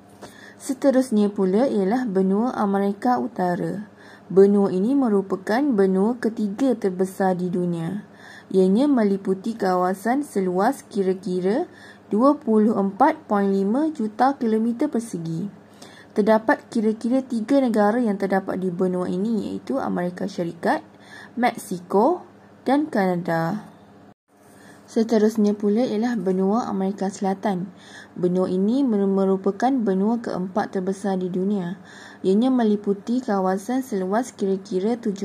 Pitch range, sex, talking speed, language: 190-230 Hz, female, 95 wpm, Malay